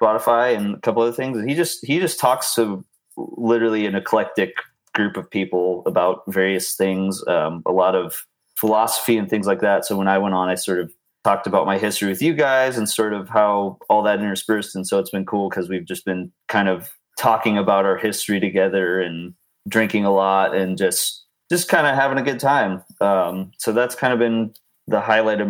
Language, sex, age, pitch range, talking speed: English, male, 30-49, 95-115 Hz, 210 wpm